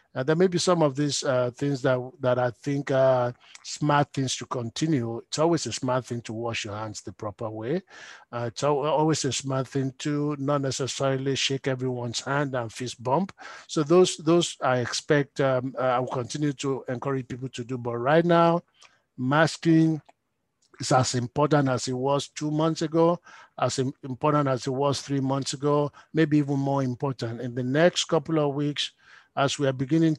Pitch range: 130-150 Hz